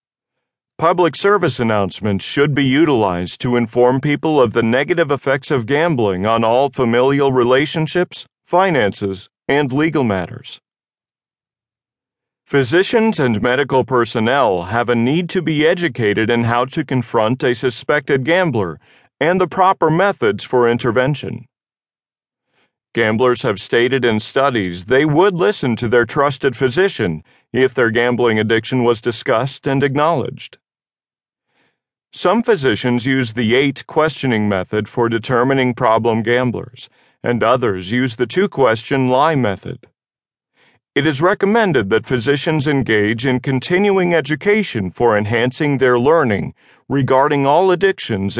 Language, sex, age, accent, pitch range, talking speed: English, male, 40-59, American, 120-150 Hz, 125 wpm